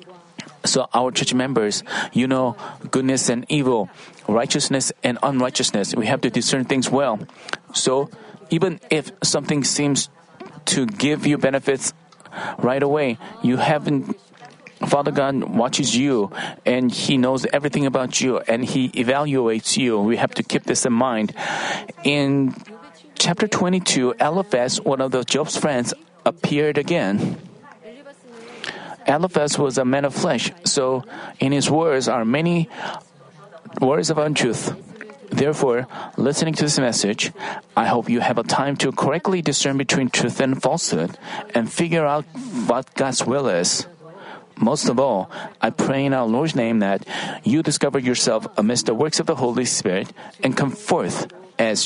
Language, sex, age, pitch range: Korean, male, 40-59, 130-170 Hz